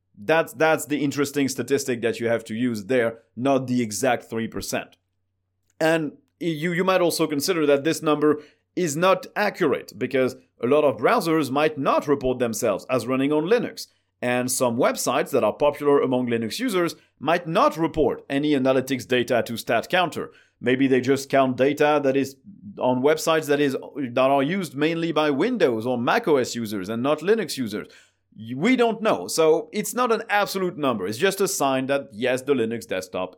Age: 40-59